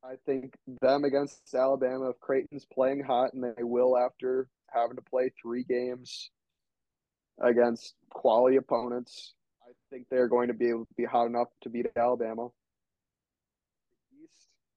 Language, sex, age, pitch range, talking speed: English, male, 20-39, 120-135 Hz, 145 wpm